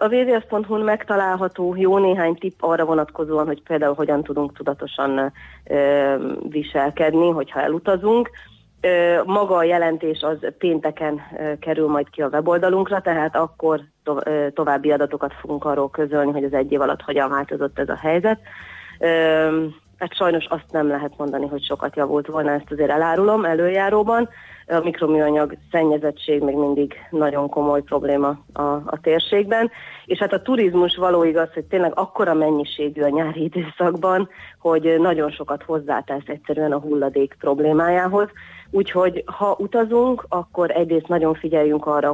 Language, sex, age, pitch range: Hungarian, female, 30-49, 145-175 Hz